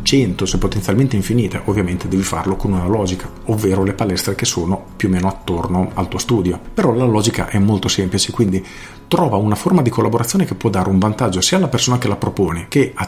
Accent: native